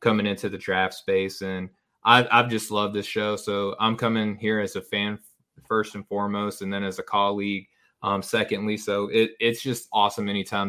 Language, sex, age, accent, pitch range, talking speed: English, male, 20-39, American, 100-115 Hz, 190 wpm